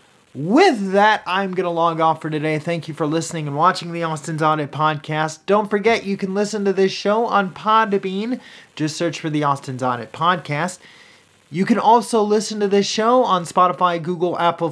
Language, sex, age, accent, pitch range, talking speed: English, male, 30-49, American, 155-200 Hz, 190 wpm